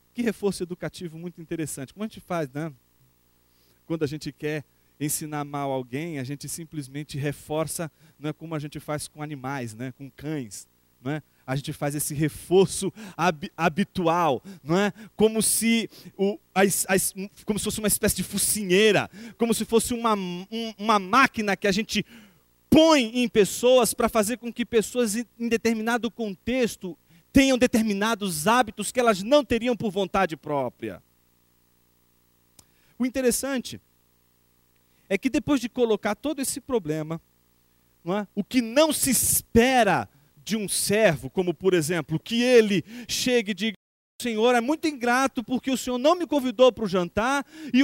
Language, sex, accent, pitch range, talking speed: Portuguese, male, Brazilian, 155-240 Hz, 150 wpm